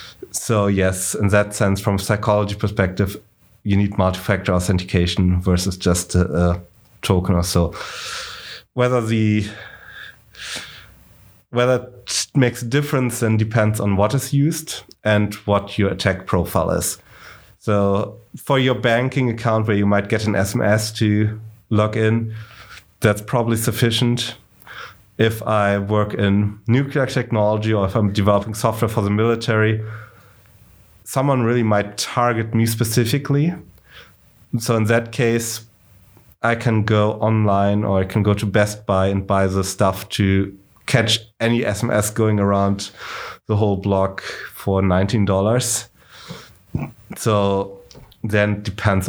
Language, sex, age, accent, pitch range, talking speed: English, male, 30-49, German, 95-115 Hz, 135 wpm